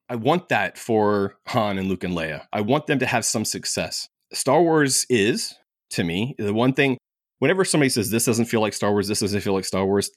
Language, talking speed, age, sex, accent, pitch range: English, 230 wpm, 30-49, male, American, 100-135 Hz